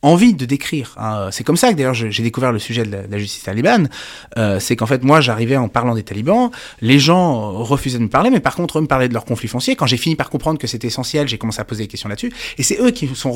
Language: French